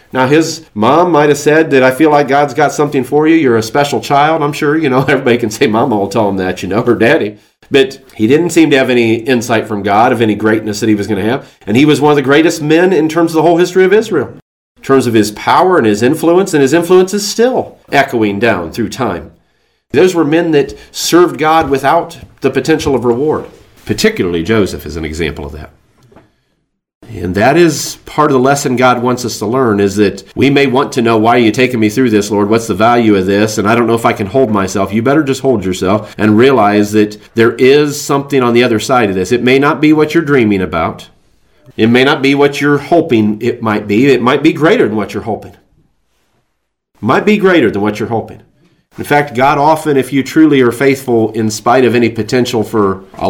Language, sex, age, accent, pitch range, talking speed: English, male, 40-59, American, 110-145 Hz, 240 wpm